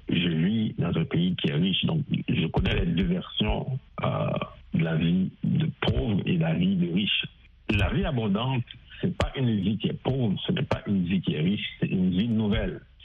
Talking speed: 225 wpm